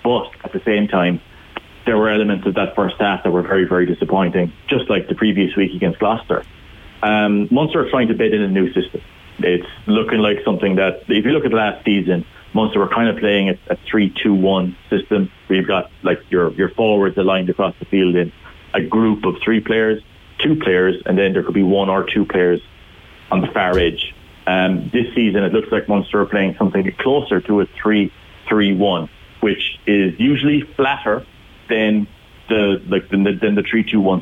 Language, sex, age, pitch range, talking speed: English, male, 30-49, 90-110 Hz, 195 wpm